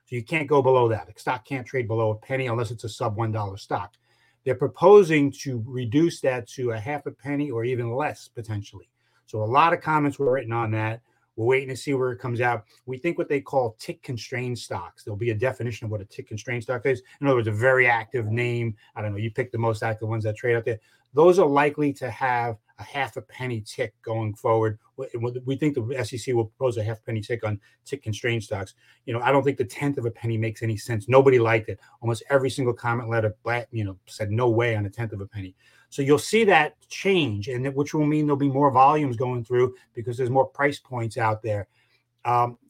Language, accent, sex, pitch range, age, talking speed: English, American, male, 115-135 Hz, 30-49, 240 wpm